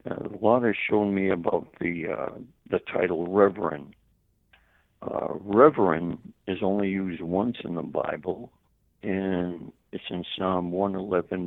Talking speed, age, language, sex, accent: 135 wpm, 60-79, English, male, American